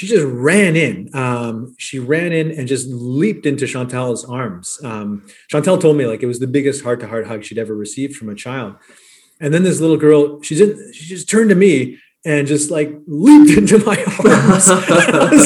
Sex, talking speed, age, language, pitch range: male, 200 wpm, 30-49, English, 125-160 Hz